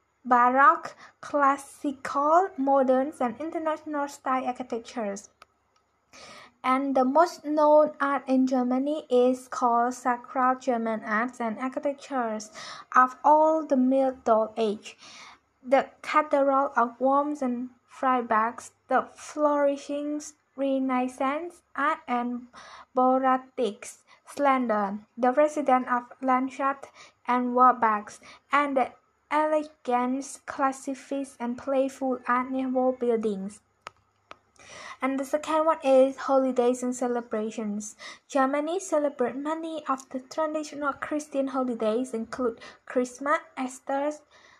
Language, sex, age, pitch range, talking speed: English, female, 20-39, 245-285 Hz, 95 wpm